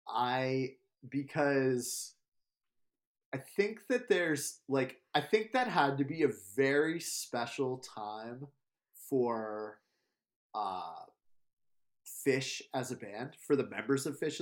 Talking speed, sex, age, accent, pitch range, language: 115 wpm, male, 30-49, American, 120-145 Hz, English